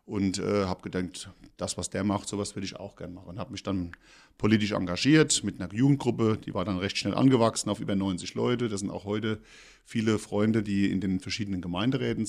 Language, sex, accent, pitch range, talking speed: German, male, German, 95-110 Hz, 215 wpm